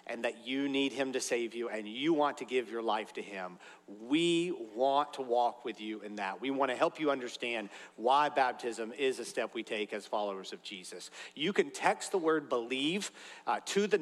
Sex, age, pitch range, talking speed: male, 40-59, 130-165 Hz, 215 wpm